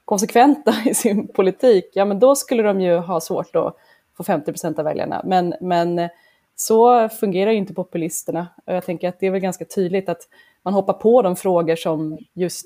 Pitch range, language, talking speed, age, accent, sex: 175-210 Hz, Swedish, 195 wpm, 20-39, native, female